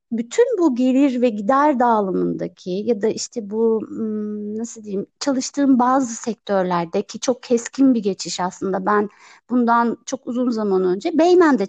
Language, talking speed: Turkish, 140 wpm